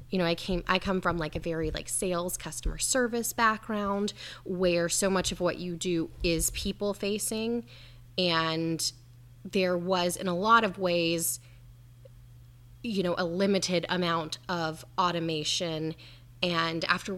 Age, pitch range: 10-29, 155-185 Hz